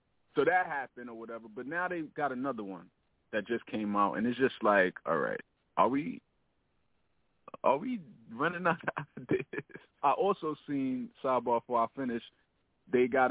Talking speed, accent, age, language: 170 wpm, American, 30-49, English